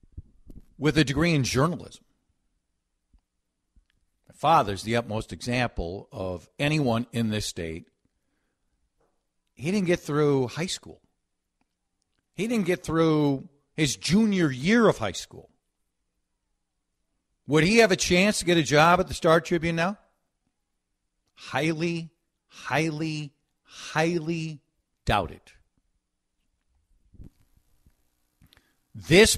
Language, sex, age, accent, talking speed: English, male, 50-69, American, 100 wpm